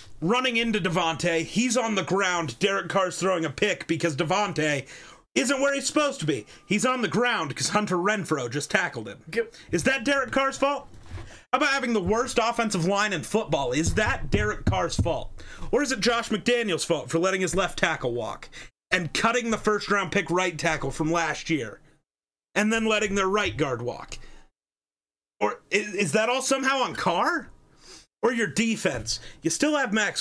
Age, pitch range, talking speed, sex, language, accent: 30-49, 170-235 Hz, 185 wpm, male, English, American